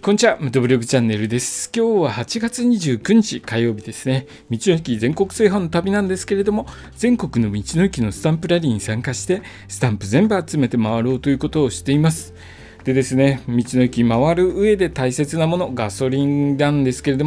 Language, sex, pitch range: Japanese, male, 125-205 Hz